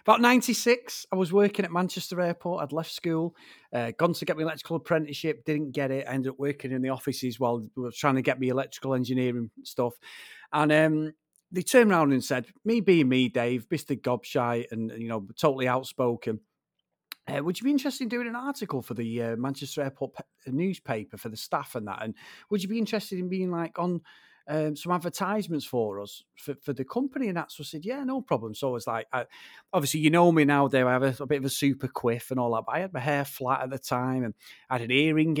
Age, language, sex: 40-59, English, male